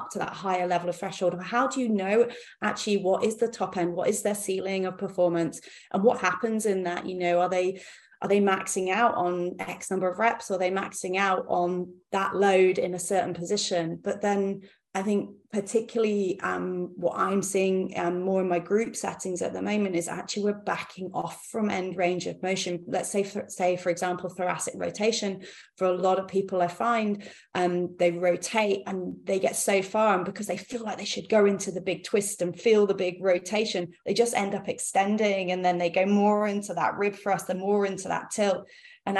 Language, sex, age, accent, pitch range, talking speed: English, female, 30-49, British, 180-200 Hz, 215 wpm